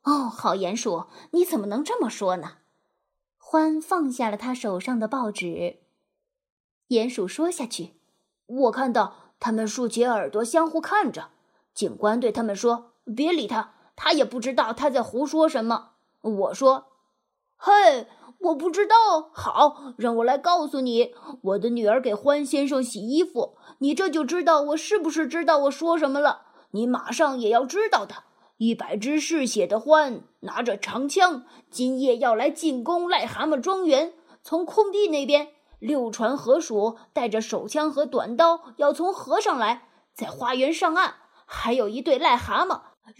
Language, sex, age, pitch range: Chinese, female, 20-39, 235-320 Hz